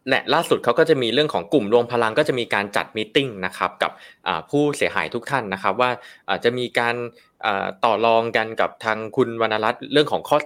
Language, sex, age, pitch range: Thai, male, 20-39, 95-125 Hz